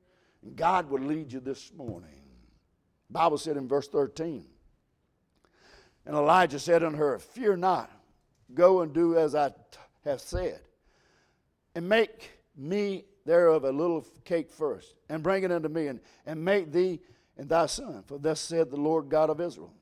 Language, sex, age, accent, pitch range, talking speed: English, male, 60-79, American, 150-190 Hz, 165 wpm